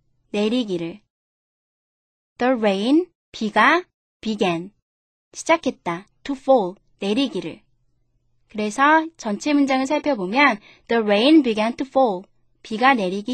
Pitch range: 195-280 Hz